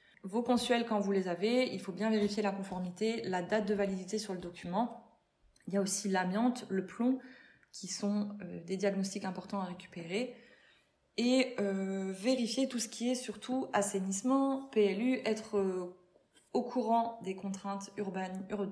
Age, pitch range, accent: 20-39, 185-215 Hz, French